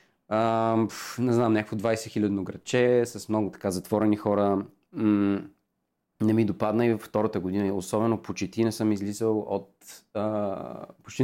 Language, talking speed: Bulgarian, 150 wpm